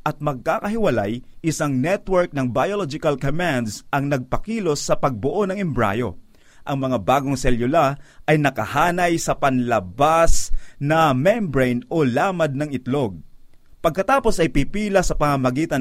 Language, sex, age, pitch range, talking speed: Filipino, male, 30-49, 130-170 Hz, 120 wpm